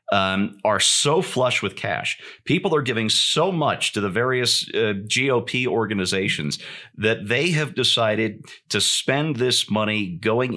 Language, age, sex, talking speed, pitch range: English, 40-59, male, 140 wpm, 105-130 Hz